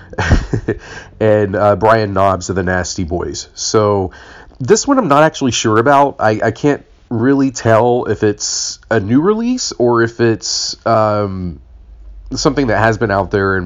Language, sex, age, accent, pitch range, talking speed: English, male, 30-49, American, 90-115 Hz, 165 wpm